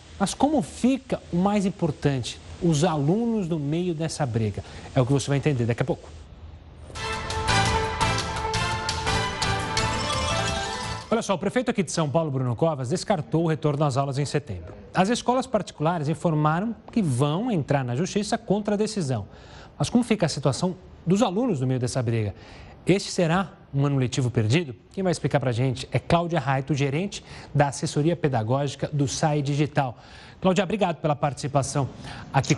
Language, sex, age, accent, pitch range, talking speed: Portuguese, male, 30-49, Brazilian, 130-195 Hz, 160 wpm